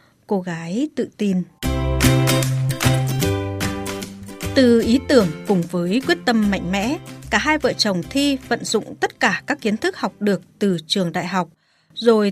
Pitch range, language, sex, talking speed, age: 180-255 Hz, Vietnamese, female, 155 wpm, 20-39